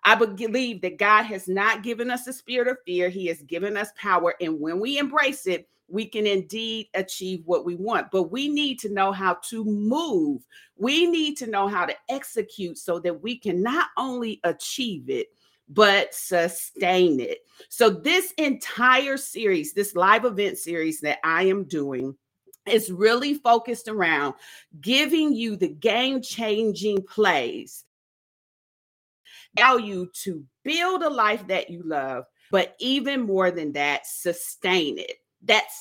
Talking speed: 155 wpm